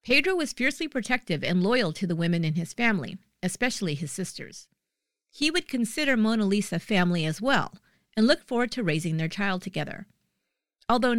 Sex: female